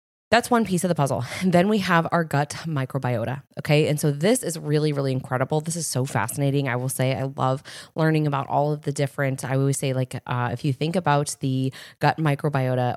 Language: English